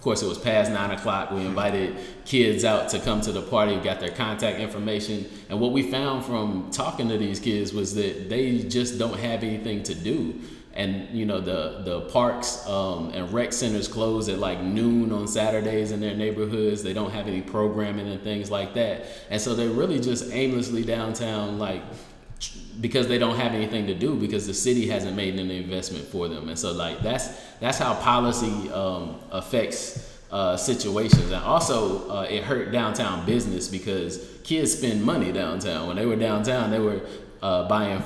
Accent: American